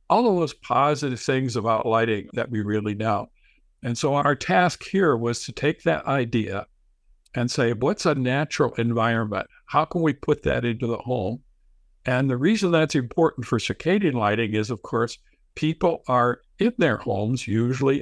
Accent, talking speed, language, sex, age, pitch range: American, 175 wpm, English, male, 60-79, 115-140 Hz